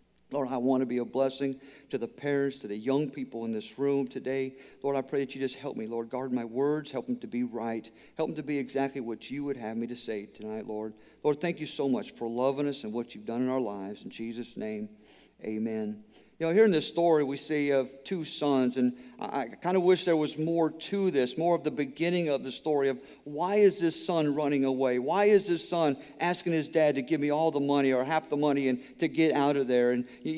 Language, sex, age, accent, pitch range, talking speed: English, male, 50-69, American, 135-180 Hz, 255 wpm